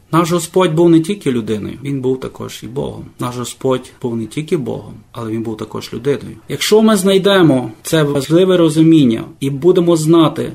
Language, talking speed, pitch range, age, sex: Ukrainian, 175 wpm, 135-170 Hz, 30-49, male